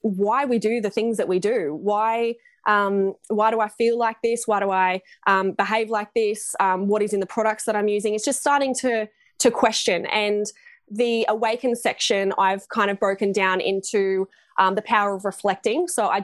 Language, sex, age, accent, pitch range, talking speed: English, female, 20-39, Australian, 195-225 Hz, 205 wpm